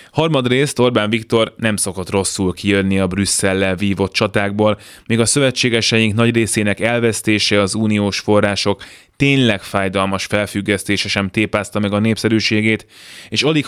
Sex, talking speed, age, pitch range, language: male, 130 wpm, 20-39, 95-115 Hz, Hungarian